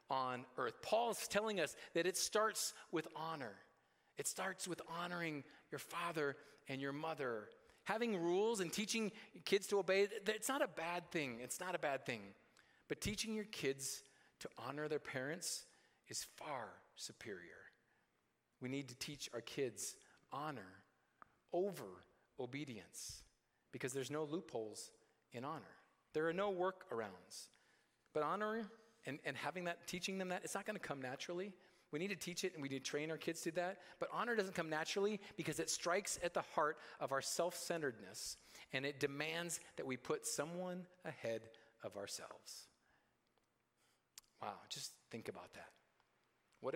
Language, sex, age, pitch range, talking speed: English, male, 40-59, 135-185 Hz, 160 wpm